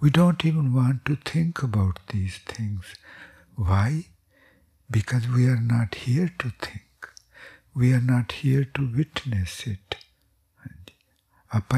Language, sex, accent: English, male, Indian